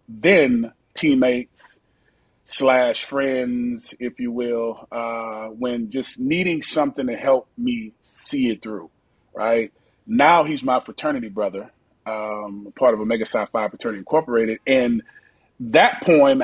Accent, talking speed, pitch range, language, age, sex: American, 130 wpm, 115-165 Hz, English, 30-49, male